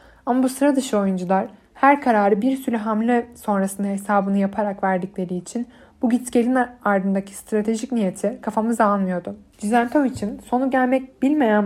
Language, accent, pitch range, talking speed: Turkish, native, 195-245 Hz, 130 wpm